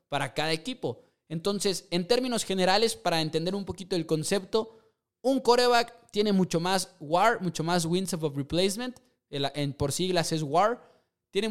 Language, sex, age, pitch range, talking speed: English, male, 20-39, 155-200 Hz, 150 wpm